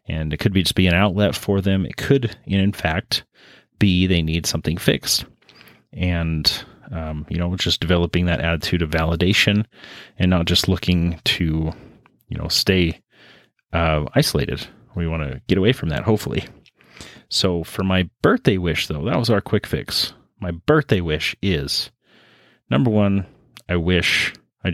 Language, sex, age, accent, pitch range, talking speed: English, male, 30-49, American, 85-105 Hz, 165 wpm